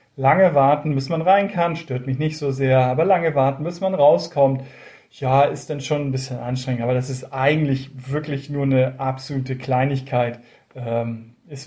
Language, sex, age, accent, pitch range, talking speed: German, male, 40-59, German, 135-175 Hz, 175 wpm